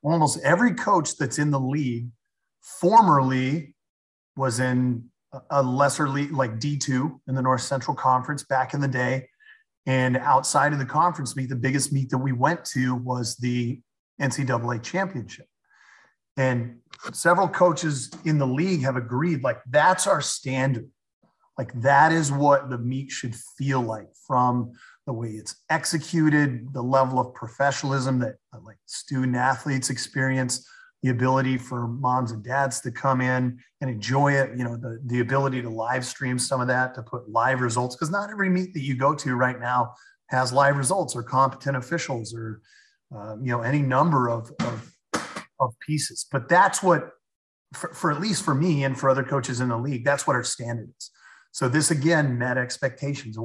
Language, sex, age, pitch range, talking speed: English, male, 30-49, 125-145 Hz, 170 wpm